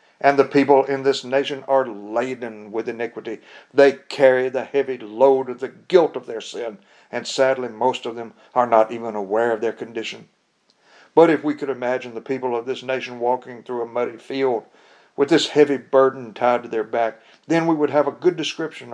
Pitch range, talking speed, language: 125-140 Hz, 200 wpm, English